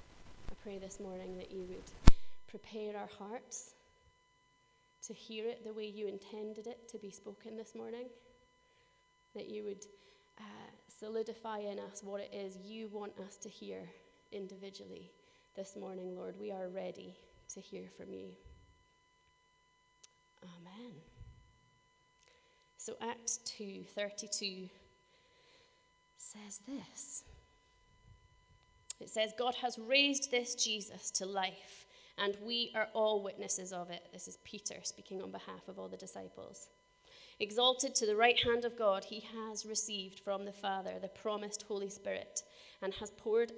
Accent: British